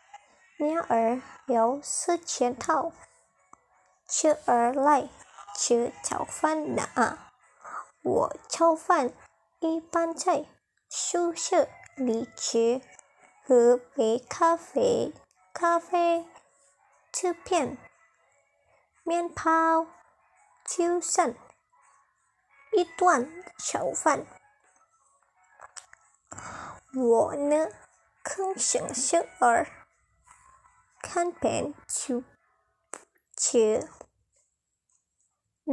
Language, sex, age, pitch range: Chinese, male, 20-39, 255-340 Hz